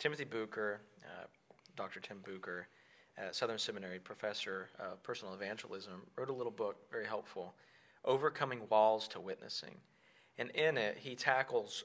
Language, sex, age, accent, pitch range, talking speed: English, male, 40-59, American, 110-140 Hz, 130 wpm